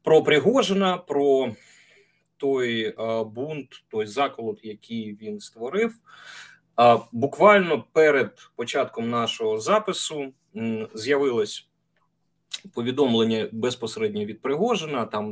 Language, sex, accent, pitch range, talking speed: Ukrainian, male, native, 120-200 Hz, 90 wpm